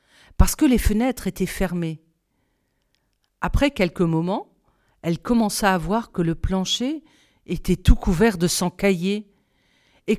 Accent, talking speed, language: French, 135 wpm, French